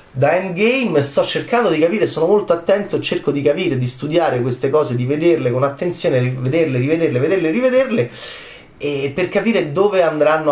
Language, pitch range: Italian, 120-170 Hz